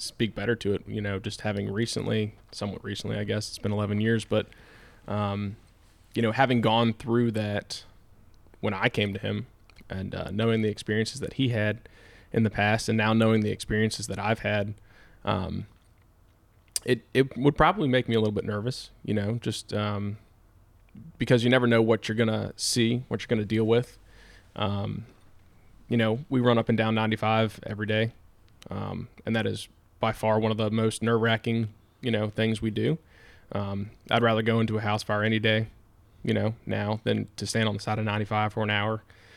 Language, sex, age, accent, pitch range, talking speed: English, male, 20-39, American, 100-115 Hz, 195 wpm